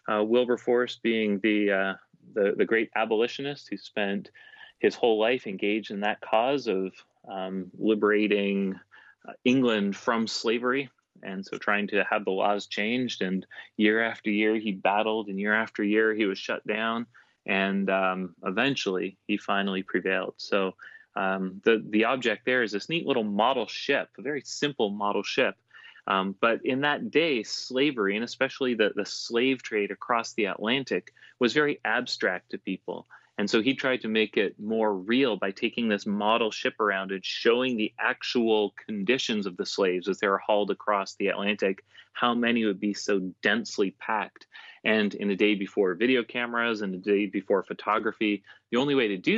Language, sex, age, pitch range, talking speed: English, male, 30-49, 100-120 Hz, 175 wpm